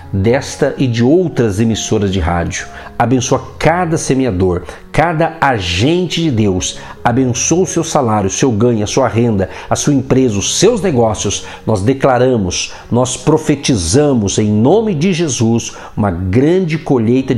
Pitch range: 100-135 Hz